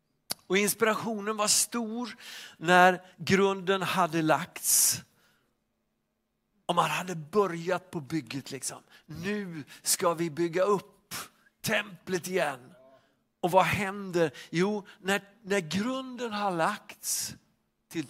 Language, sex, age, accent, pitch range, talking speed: Swedish, male, 60-79, native, 160-215 Hz, 105 wpm